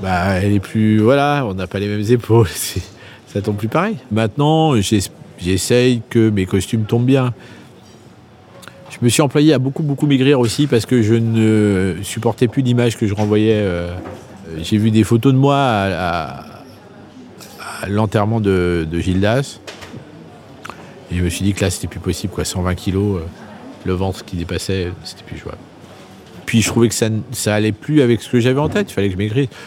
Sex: male